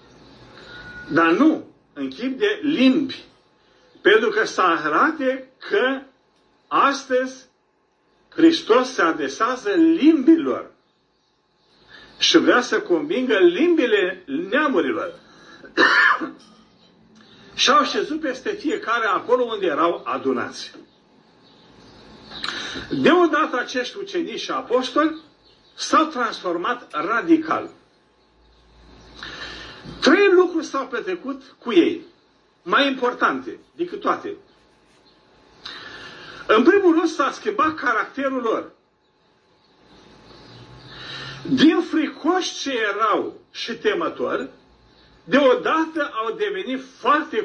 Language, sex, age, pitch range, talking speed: Romanian, male, 50-69, 260-355 Hz, 85 wpm